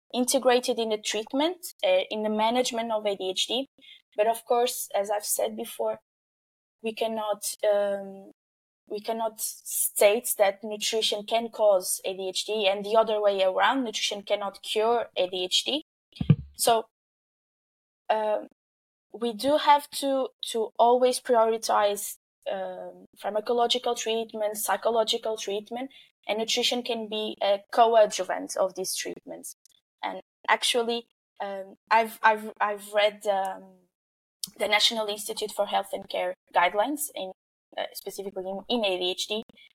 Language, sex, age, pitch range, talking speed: English, female, 10-29, 200-235 Hz, 125 wpm